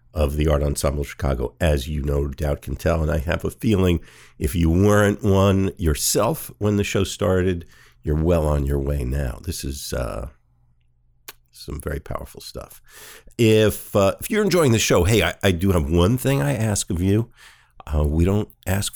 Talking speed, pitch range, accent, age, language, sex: 190 wpm, 70-100 Hz, American, 50-69, English, male